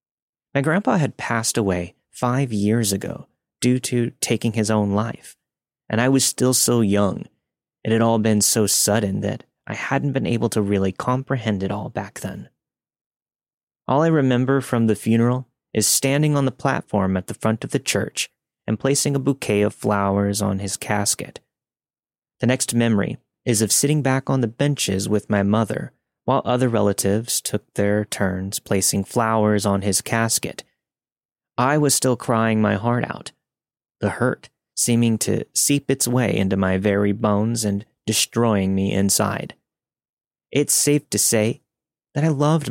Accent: American